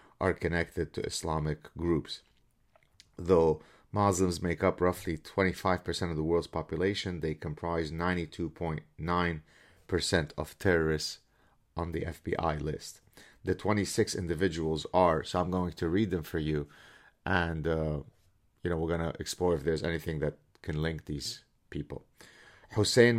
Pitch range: 85-100 Hz